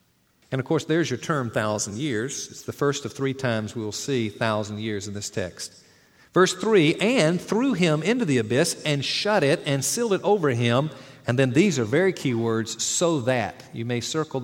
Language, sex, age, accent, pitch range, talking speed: English, male, 50-69, American, 115-165 Hz, 205 wpm